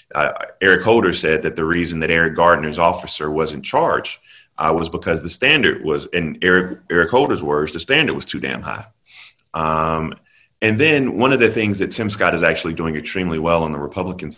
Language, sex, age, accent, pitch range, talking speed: English, male, 30-49, American, 80-95 Hz, 205 wpm